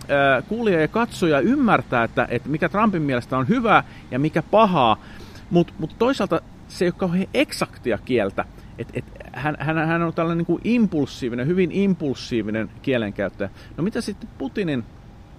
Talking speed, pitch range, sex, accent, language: 150 wpm, 115-170 Hz, male, native, Finnish